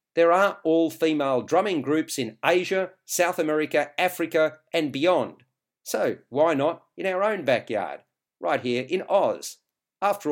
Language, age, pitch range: English, 50-69, 140-185 Hz